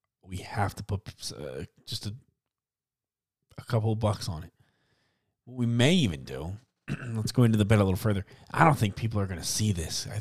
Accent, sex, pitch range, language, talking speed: American, male, 95-120 Hz, English, 210 wpm